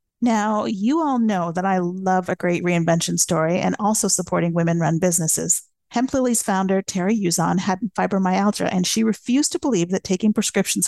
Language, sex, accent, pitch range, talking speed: English, female, American, 185-230 Hz, 170 wpm